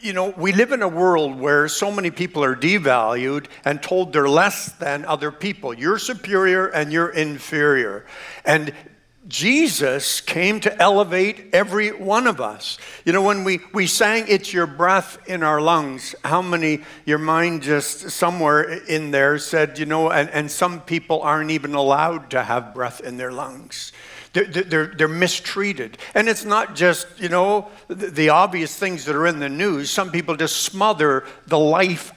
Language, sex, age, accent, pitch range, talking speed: English, male, 60-79, American, 150-195 Hz, 175 wpm